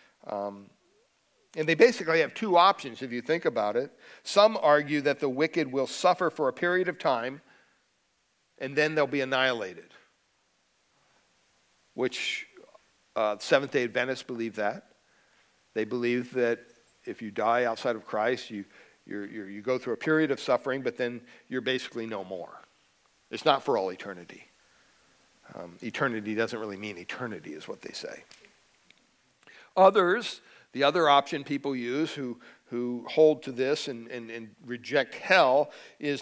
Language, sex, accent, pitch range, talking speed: English, male, American, 120-160 Hz, 150 wpm